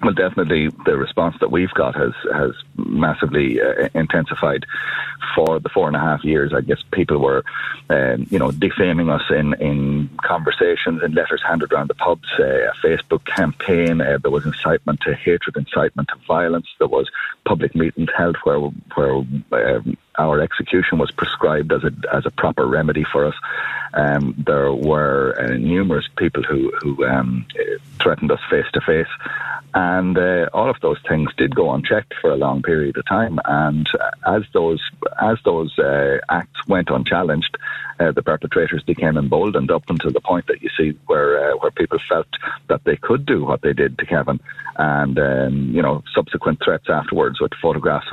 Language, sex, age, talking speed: English, male, 40-59, 180 wpm